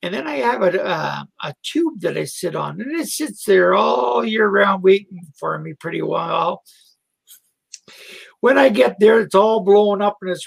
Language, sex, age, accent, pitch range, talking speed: English, male, 60-79, American, 185-280 Hz, 195 wpm